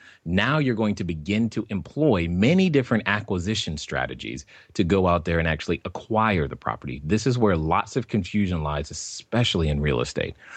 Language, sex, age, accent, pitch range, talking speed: English, male, 30-49, American, 85-120 Hz, 175 wpm